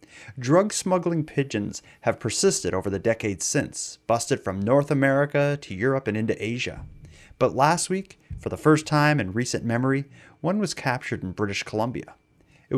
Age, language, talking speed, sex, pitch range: 30-49, English, 160 wpm, male, 105-150 Hz